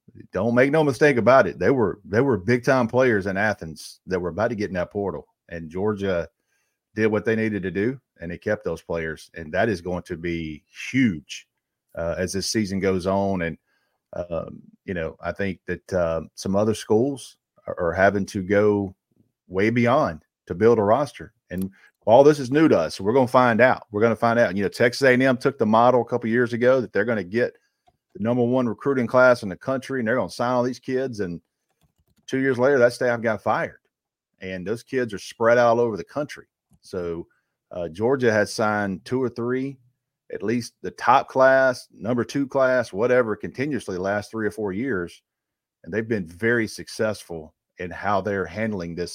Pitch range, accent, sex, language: 95-125 Hz, American, male, English